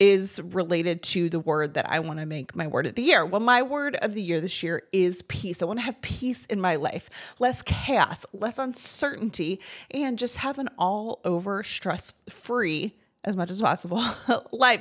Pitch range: 180-245 Hz